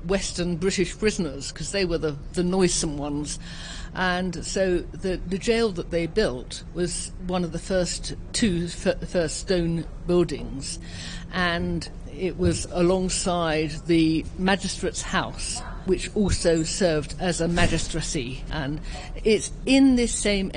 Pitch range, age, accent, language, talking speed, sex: 155-185 Hz, 50-69, British, English, 130 wpm, female